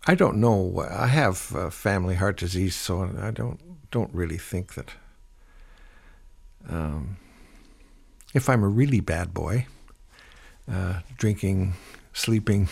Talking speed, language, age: 125 wpm, English, 60-79